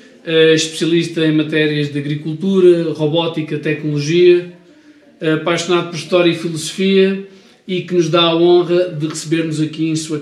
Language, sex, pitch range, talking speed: Portuguese, male, 150-170 Hz, 135 wpm